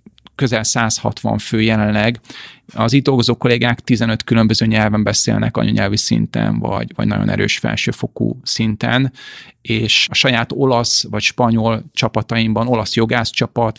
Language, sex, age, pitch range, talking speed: Hungarian, male, 30-49, 115-125 Hz, 120 wpm